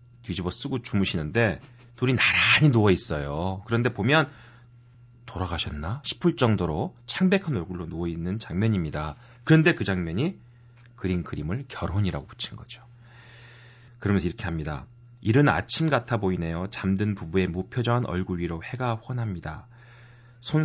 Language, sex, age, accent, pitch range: Korean, male, 40-59, native, 95-120 Hz